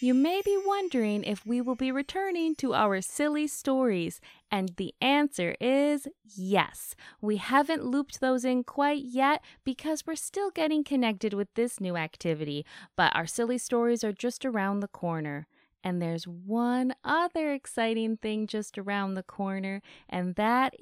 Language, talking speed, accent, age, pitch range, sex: English, 160 wpm, American, 20-39, 195-285 Hz, female